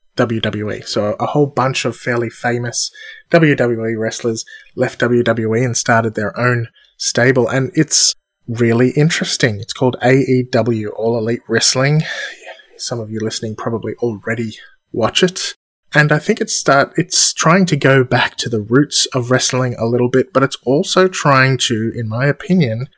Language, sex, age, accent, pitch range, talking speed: English, male, 20-39, Australian, 115-140 Hz, 160 wpm